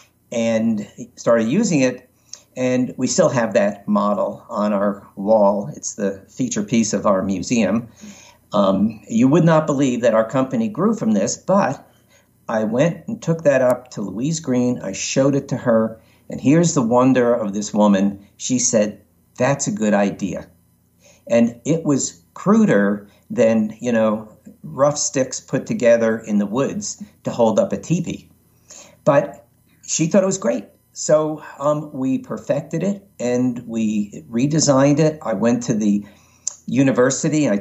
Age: 50-69